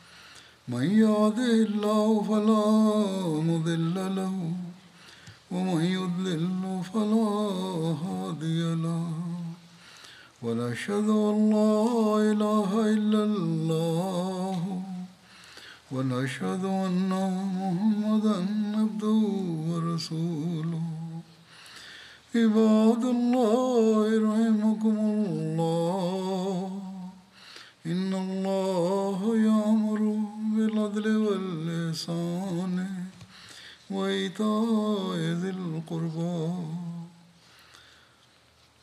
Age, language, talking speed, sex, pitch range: 60-79, Indonesian, 35 wpm, male, 170-215 Hz